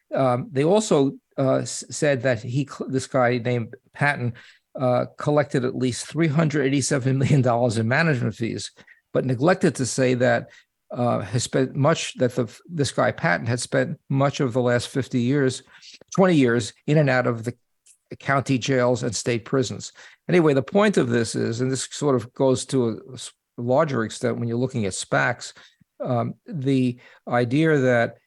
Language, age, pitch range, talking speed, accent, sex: English, 50-69, 120-140 Hz, 170 wpm, American, male